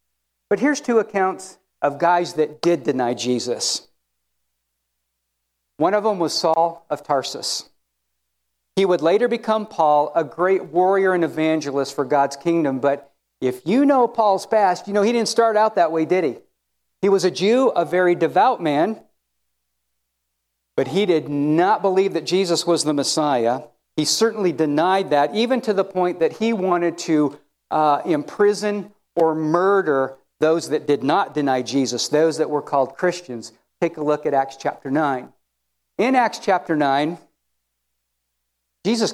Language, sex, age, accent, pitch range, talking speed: English, male, 50-69, American, 120-190 Hz, 160 wpm